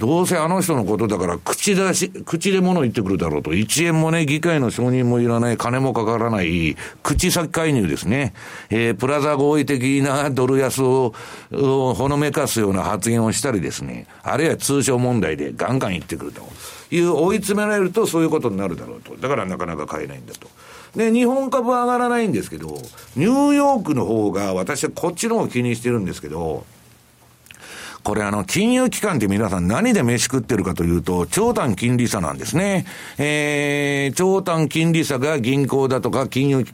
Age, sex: 60-79, male